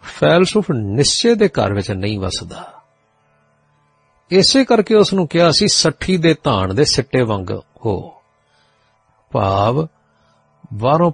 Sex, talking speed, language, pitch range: male, 130 wpm, Punjabi, 95-145 Hz